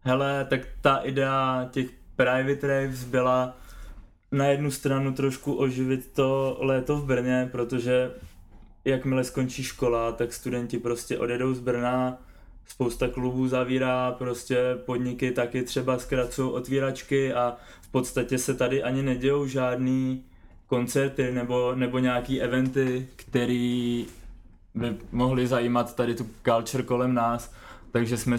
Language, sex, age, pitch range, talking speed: Czech, male, 20-39, 115-130 Hz, 125 wpm